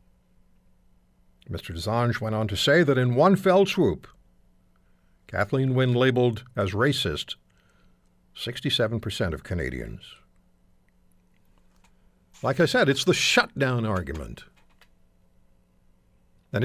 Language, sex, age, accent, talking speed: English, male, 60-79, American, 95 wpm